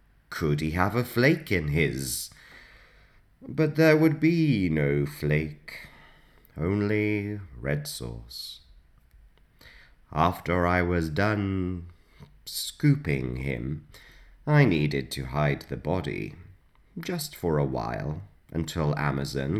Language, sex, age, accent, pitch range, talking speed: English, male, 30-49, British, 70-100 Hz, 105 wpm